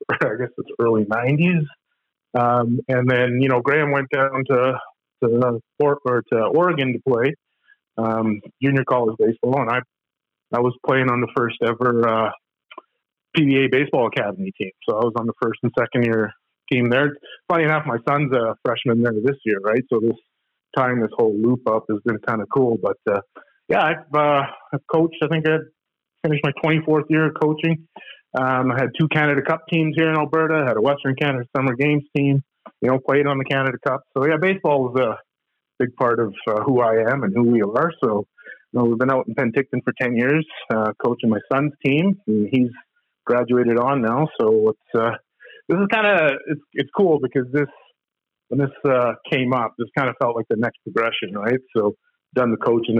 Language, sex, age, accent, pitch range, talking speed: English, male, 30-49, American, 115-145 Hz, 205 wpm